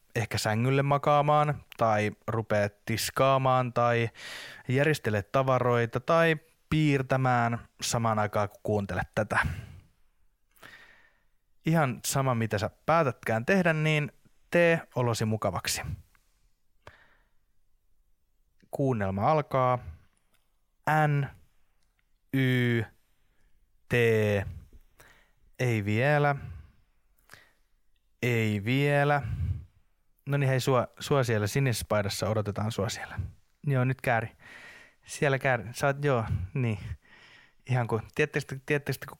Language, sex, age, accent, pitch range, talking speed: English, male, 30-49, Finnish, 105-135 Hz, 85 wpm